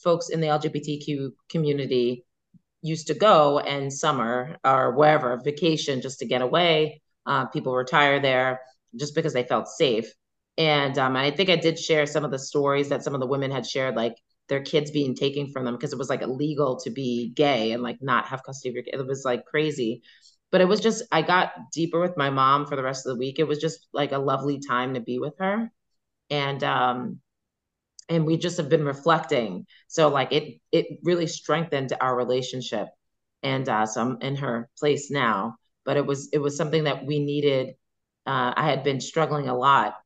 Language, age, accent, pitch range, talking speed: English, 30-49, American, 130-155 Hz, 205 wpm